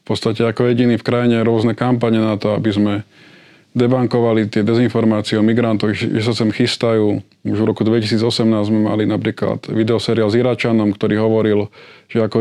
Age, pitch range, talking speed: 20-39, 110-120 Hz, 175 wpm